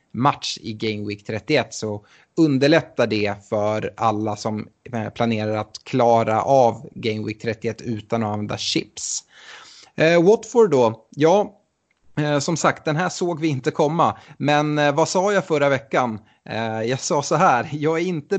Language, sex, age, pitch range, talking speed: Swedish, male, 30-49, 115-150 Hz, 165 wpm